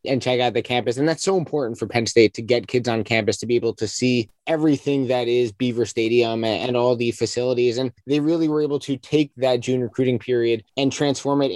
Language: English